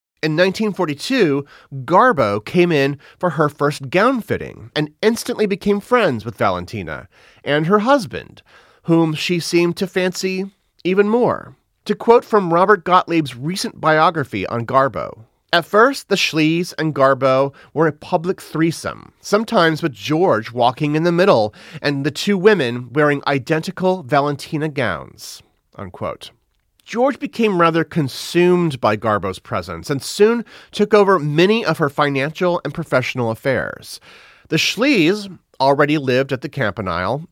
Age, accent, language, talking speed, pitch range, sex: 30-49, American, English, 140 wpm, 135-190 Hz, male